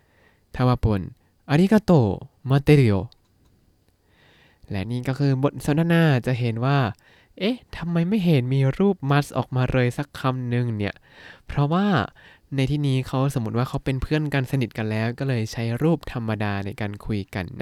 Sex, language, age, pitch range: male, Thai, 20-39, 115-150 Hz